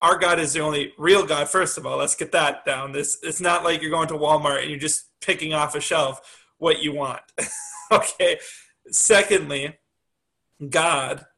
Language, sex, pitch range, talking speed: English, male, 145-165 Hz, 185 wpm